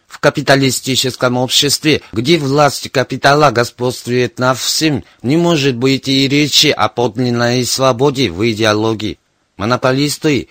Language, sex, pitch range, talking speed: Russian, male, 120-145 Hz, 115 wpm